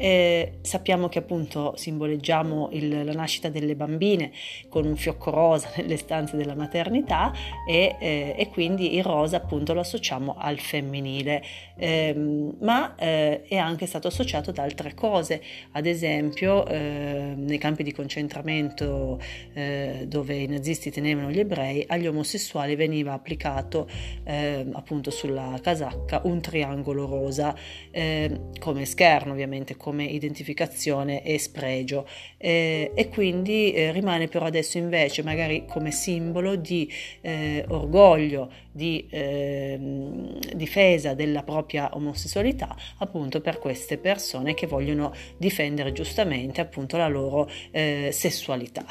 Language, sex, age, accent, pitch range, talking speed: Italian, female, 30-49, native, 140-165 Hz, 130 wpm